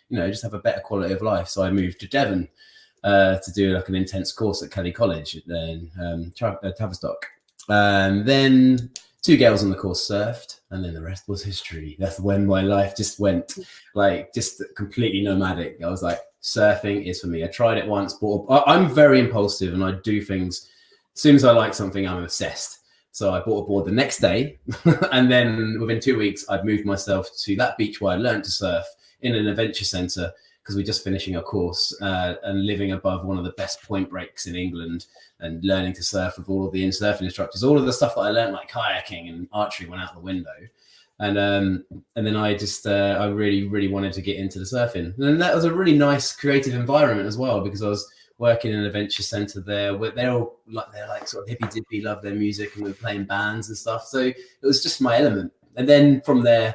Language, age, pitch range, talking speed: English, 20-39, 95-115 Hz, 230 wpm